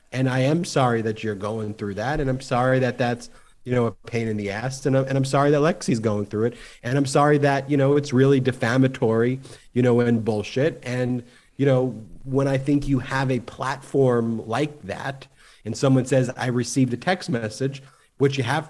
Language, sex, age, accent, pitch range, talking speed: English, male, 30-49, American, 125-145 Hz, 215 wpm